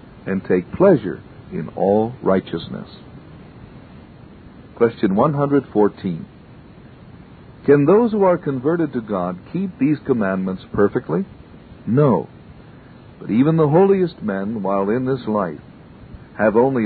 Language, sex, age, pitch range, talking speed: English, male, 60-79, 100-155 Hz, 110 wpm